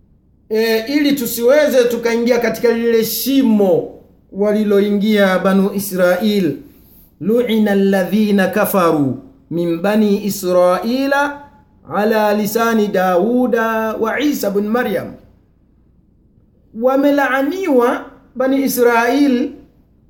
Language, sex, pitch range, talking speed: Swahili, male, 200-255 Hz, 80 wpm